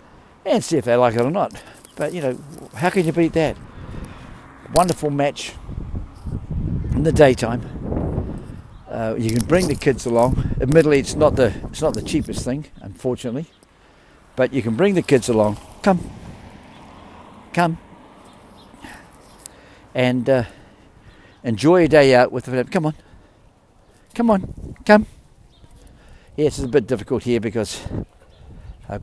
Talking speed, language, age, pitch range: 145 wpm, English, 50-69, 105-145 Hz